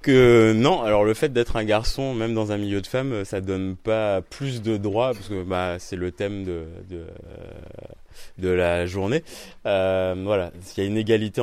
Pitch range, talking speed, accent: 90-105 Hz, 205 wpm, French